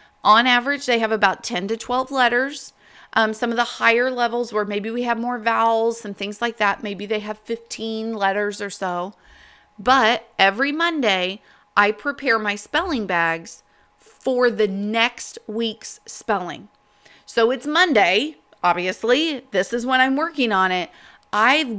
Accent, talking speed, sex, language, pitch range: American, 155 wpm, female, English, 205-255 Hz